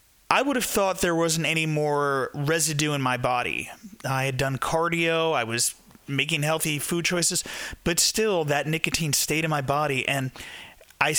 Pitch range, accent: 140-175 Hz, American